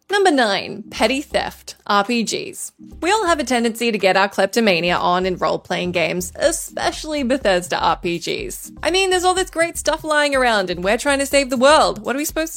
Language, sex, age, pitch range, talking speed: English, female, 20-39, 200-300 Hz, 195 wpm